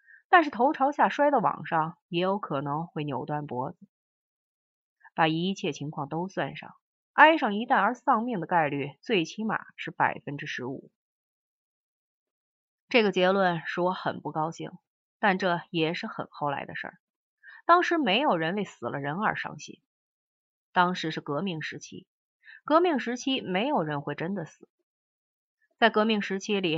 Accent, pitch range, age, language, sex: native, 165-240 Hz, 30-49, Chinese, female